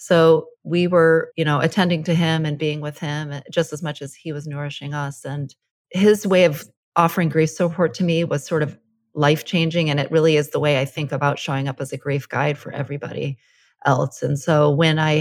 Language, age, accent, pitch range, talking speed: English, 30-49, American, 140-160 Hz, 215 wpm